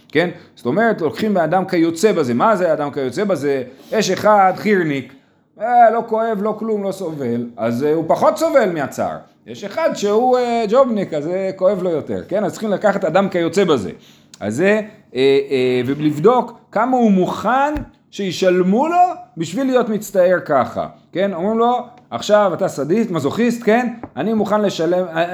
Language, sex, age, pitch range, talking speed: Hebrew, male, 40-59, 140-210 Hz, 170 wpm